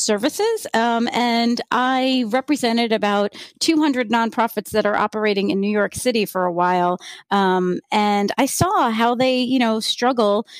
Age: 30-49